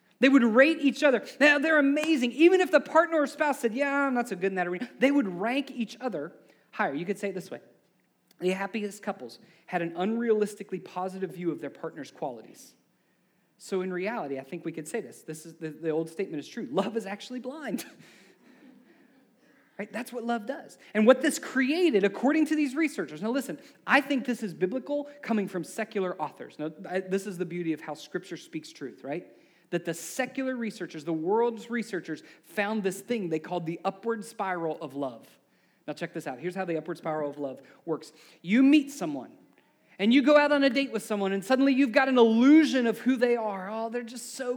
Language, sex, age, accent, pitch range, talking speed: English, male, 30-49, American, 185-270 Hz, 215 wpm